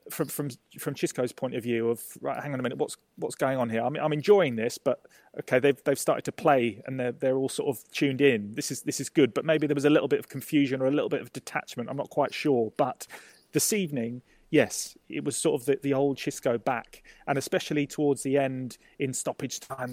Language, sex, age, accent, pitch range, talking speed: English, male, 30-49, British, 125-150 Hz, 250 wpm